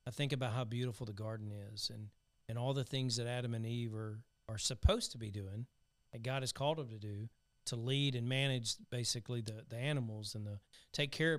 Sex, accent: male, American